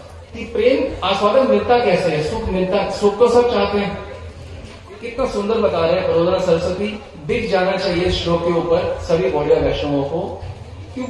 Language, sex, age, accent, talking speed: Hindi, male, 40-59, native, 175 wpm